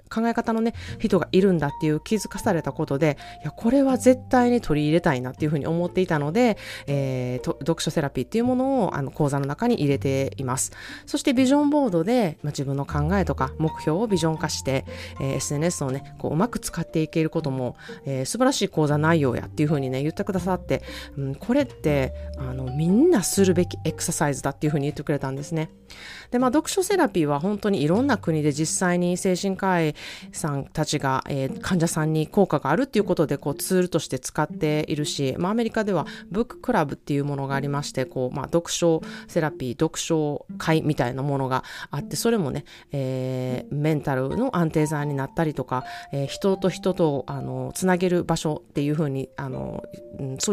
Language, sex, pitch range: Japanese, female, 140-190 Hz